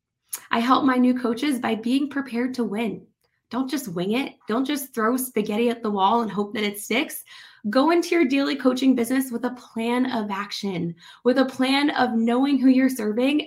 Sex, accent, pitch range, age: female, American, 210-255 Hz, 20-39